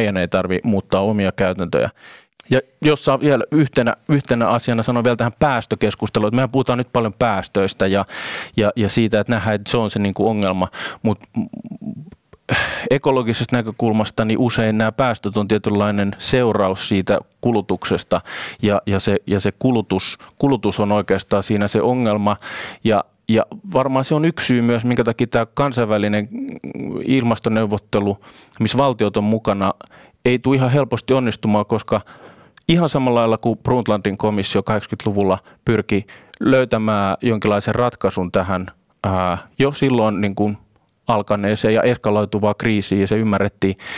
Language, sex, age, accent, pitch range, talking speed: Finnish, male, 30-49, native, 100-125 Hz, 145 wpm